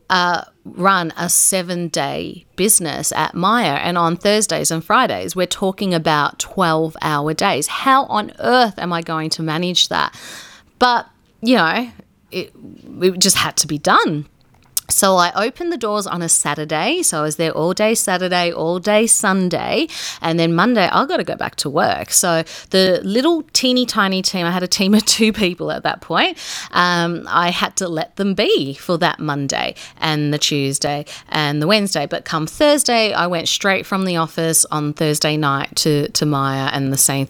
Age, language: 30-49, English